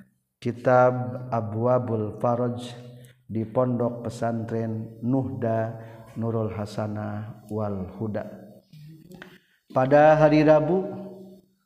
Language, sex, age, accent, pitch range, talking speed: Indonesian, male, 50-69, native, 105-130 Hz, 70 wpm